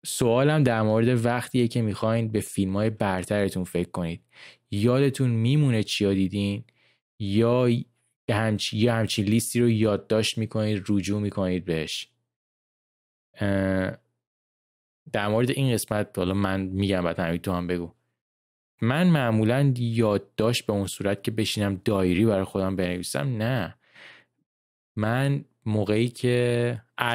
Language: Persian